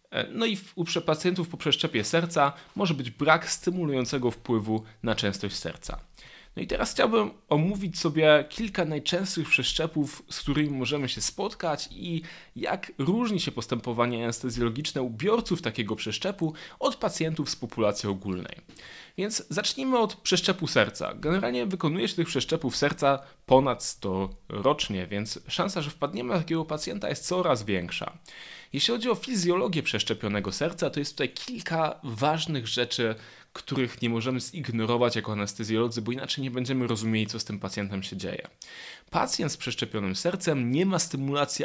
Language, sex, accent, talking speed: Polish, male, native, 150 wpm